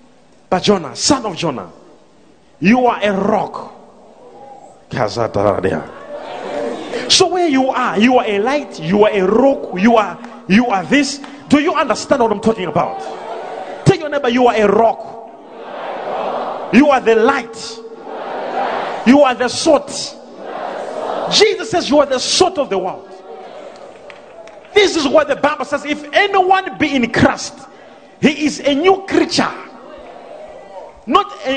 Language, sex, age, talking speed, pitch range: English, male, 40-59, 145 wpm, 230-290 Hz